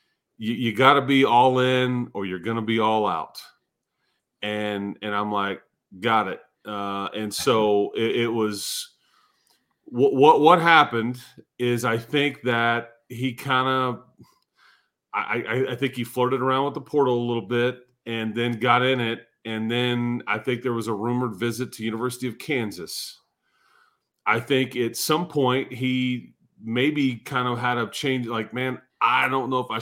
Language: English